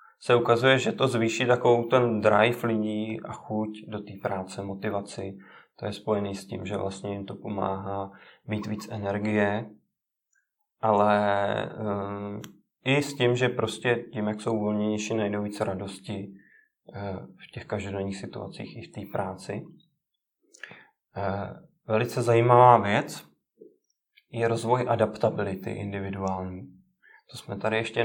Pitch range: 100-115 Hz